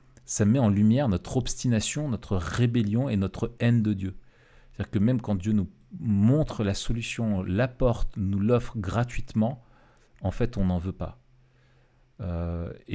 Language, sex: French, male